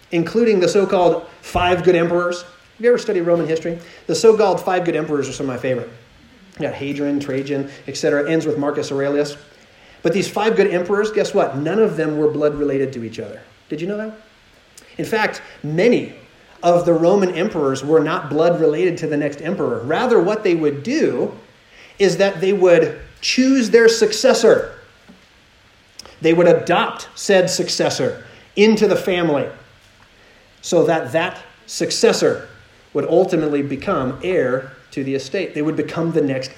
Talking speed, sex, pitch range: 165 wpm, male, 140-190 Hz